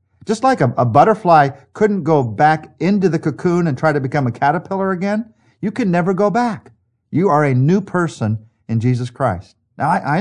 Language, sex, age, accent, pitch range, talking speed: English, male, 50-69, American, 115-170 Hz, 200 wpm